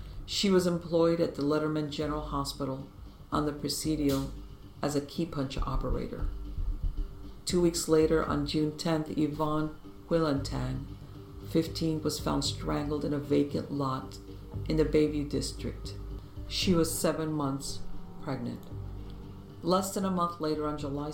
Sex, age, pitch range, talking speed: female, 50-69, 115-150 Hz, 135 wpm